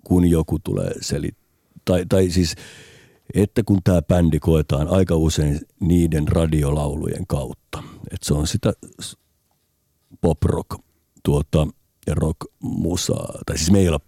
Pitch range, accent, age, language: 75-95 Hz, native, 50-69, Finnish